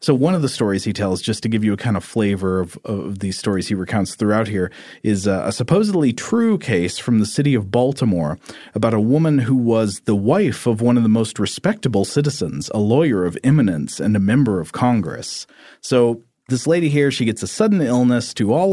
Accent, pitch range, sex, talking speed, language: American, 110-140 Hz, male, 215 wpm, English